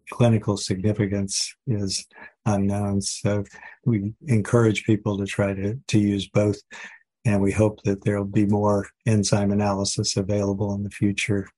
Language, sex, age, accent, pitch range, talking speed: English, male, 50-69, American, 100-110 Hz, 140 wpm